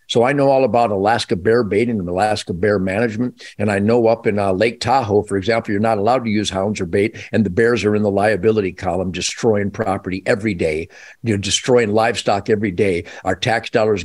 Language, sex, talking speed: English, male, 210 wpm